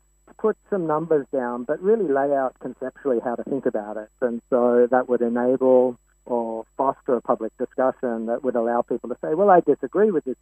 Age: 50-69